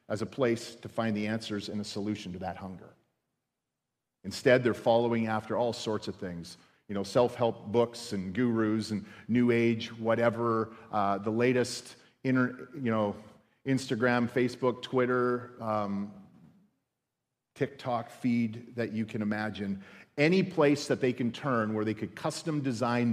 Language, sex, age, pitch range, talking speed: English, male, 40-59, 110-140 Hz, 150 wpm